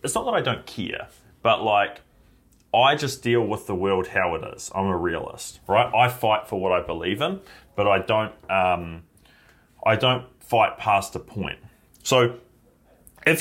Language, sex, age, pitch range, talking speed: English, male, 30-49, 95-125 Hz, 180 wpm